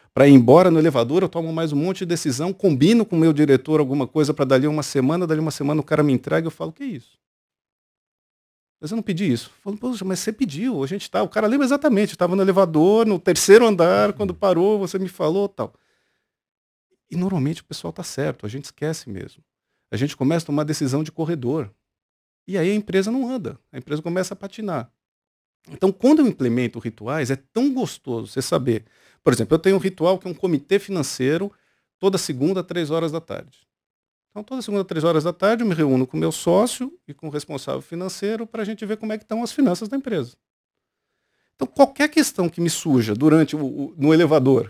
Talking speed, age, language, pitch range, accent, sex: 215 wpm, 50-69, Portuguese, 140-200 Hz, Brazilian, male